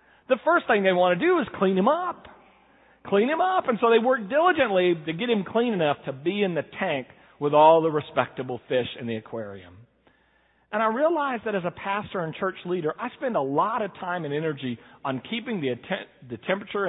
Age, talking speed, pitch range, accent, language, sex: 40-59, 215 wpm, 145-220 Hz, American, English, male